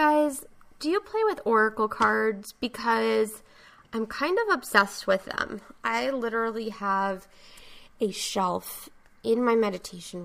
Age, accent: 20-39, American